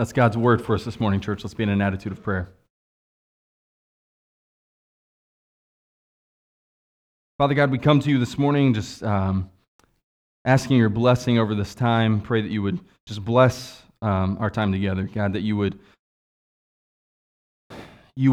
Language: English